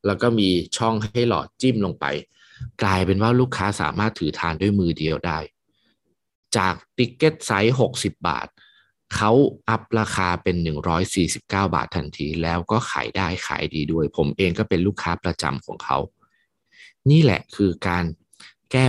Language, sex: Thai, male